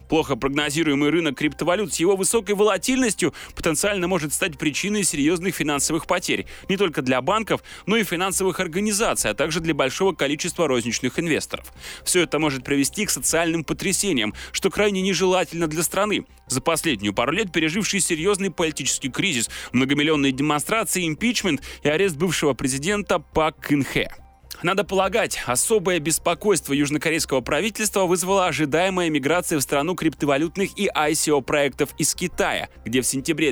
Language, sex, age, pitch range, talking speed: Russian, male, 20-39, 145-195 Hz, 140 wpm